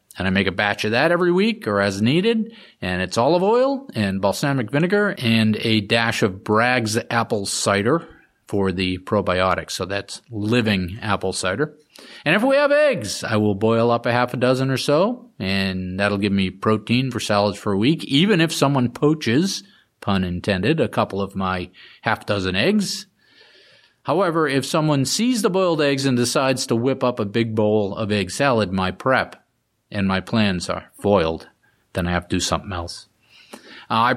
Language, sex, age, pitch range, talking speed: English, male, 40-59, 100-140 Hz, 185 wpm